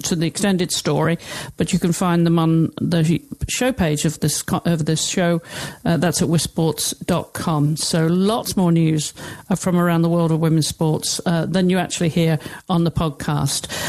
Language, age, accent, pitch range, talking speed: English, 50-69, British, 175-215 Hz, 175 wpm